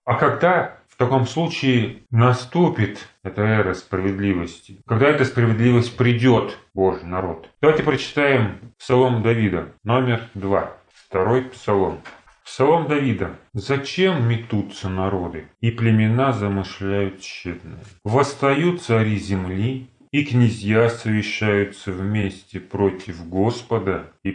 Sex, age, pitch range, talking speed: male, 30-49, 95-125 Hz, 105 wpm